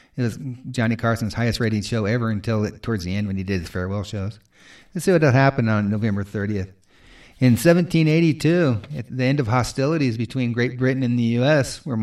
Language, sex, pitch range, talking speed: English, male, 105-135 Hz, 185 wpm